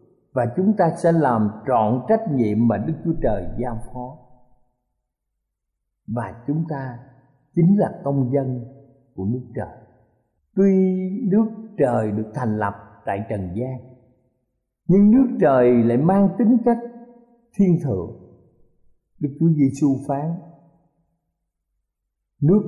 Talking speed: 125 wpm